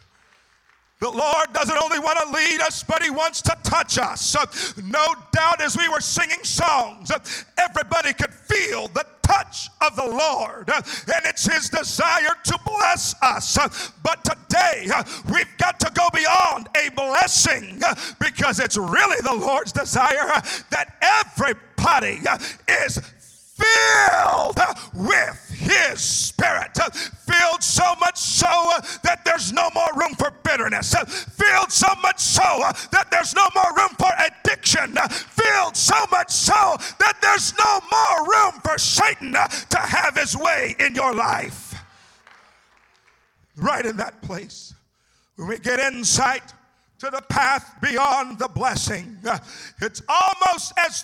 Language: English